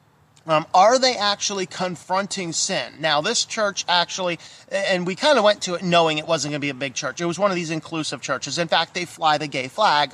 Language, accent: English, American